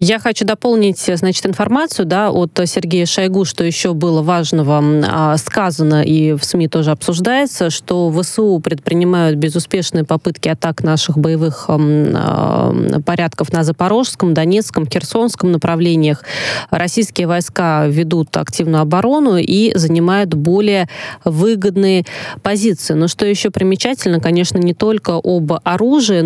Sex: female